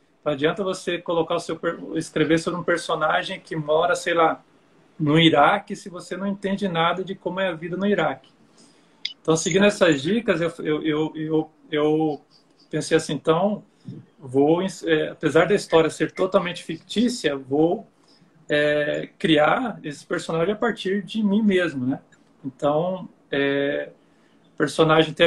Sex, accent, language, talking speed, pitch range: male, Brazilian, Portuguese, 150 wpm, 155-180 Hz